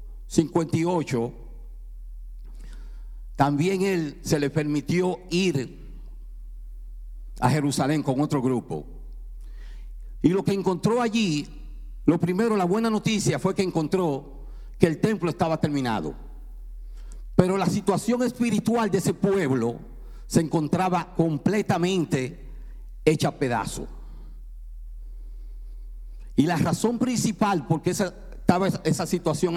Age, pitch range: 50-69, 125-185 Hz